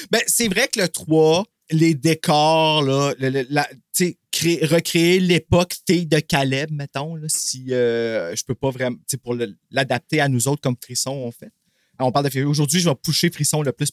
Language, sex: French, male